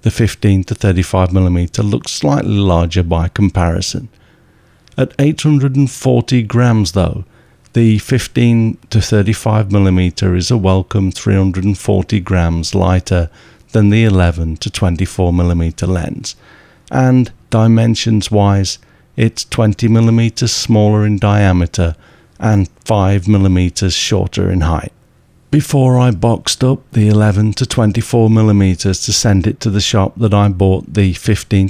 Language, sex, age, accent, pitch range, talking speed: English, male, 50-69, British, 95-115 Hz, 100 wpm